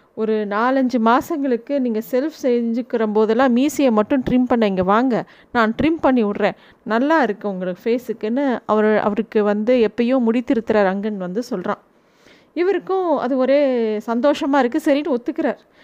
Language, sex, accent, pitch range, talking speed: Tamil, female, native, 245-310 Hz, 135 wpm